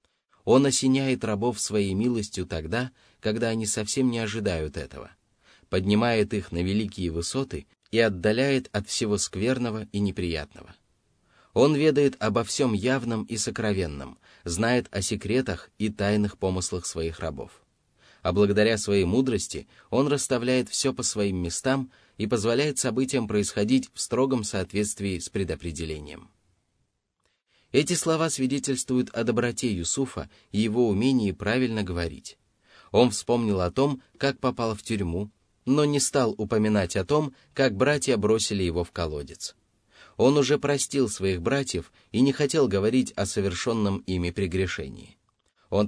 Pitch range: 95-125 Hz